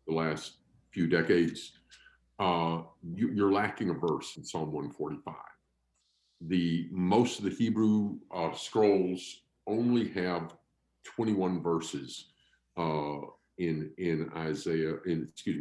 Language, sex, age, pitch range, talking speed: English, male, 50-69, 80-105 Hz, 115 wpm